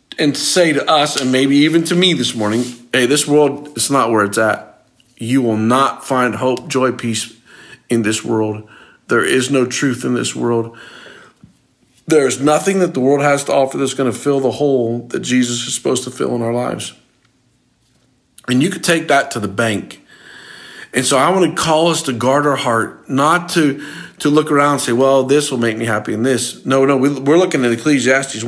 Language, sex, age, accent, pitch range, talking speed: English, male, 50-69, American, 115-140 Hz, 205 wpm